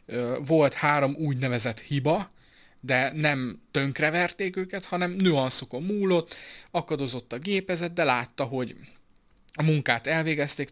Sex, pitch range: male, 120-150 Hz